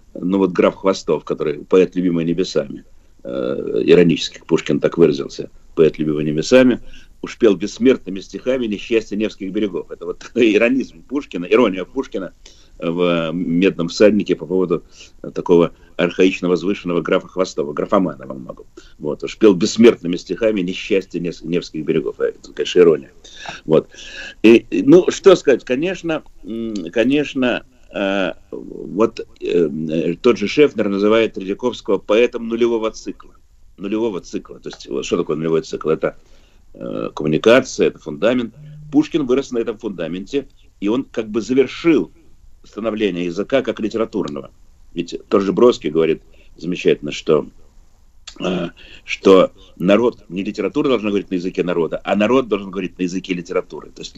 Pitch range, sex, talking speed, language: 90-125 Hz, male, 135 wpm, Russian